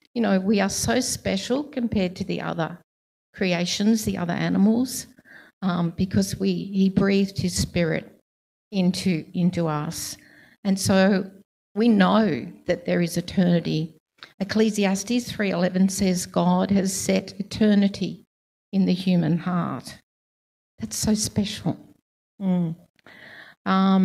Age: 50-69